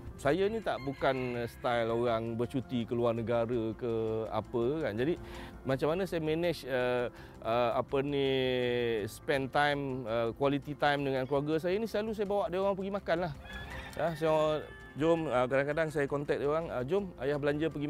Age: 30-49